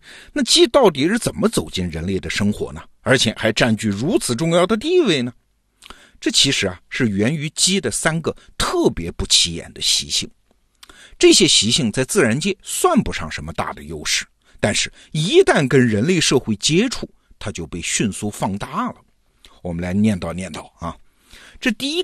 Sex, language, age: male, Chinese, 50-69